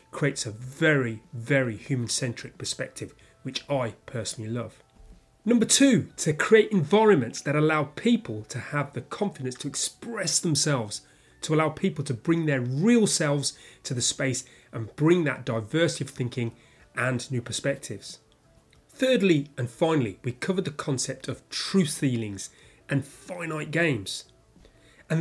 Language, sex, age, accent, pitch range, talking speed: English, male, 30-49, British, 130-175 Hz, 140 wpm